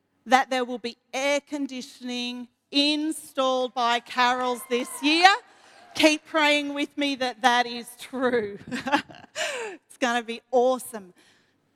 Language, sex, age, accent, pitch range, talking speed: English, female, 40-59, Australian, 250-335 Hz, 115 wpm